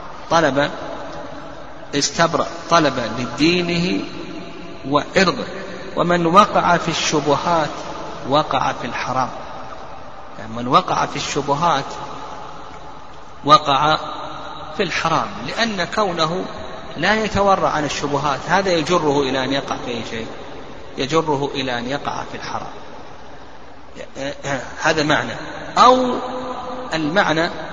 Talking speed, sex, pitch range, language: 95 wpm, male, 145-175 Hz, Arabic